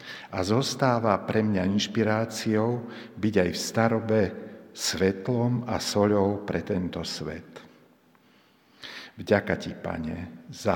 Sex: male